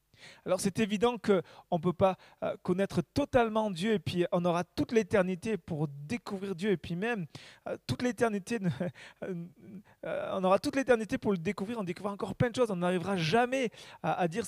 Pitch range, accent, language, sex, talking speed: 165-215 Hz, French, French, male, 175 wpm